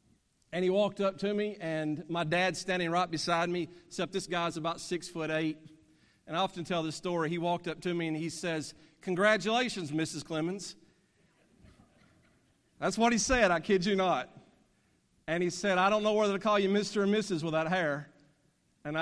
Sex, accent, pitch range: male, American, 155-200 Hz